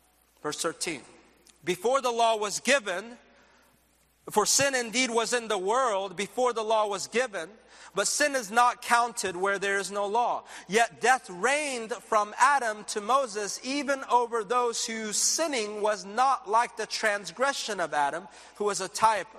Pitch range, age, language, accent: 175-240 Hz, 40-59, English, American